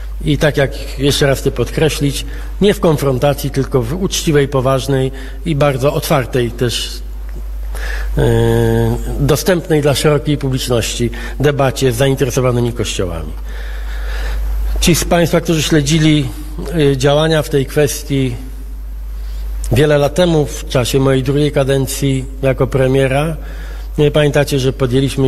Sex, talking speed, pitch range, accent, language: male, 115 wpm, 120-150 Hz, native, Polish